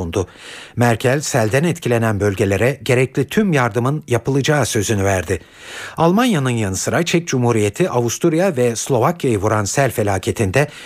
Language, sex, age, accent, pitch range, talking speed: Turkish, male, 60-79, native, 115-155 Hz, 120 wpm